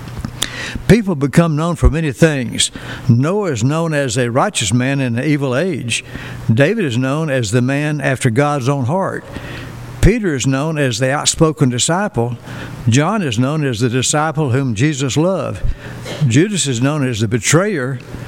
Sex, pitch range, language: male, 130-160 Hz, English